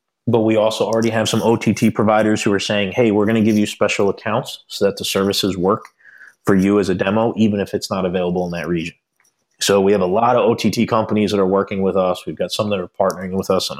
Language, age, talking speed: English, 30-49, 255 wpm